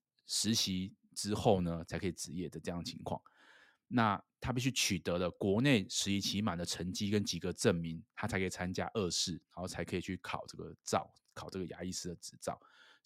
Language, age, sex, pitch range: Chinese, 20-39, male, 90-110 Hz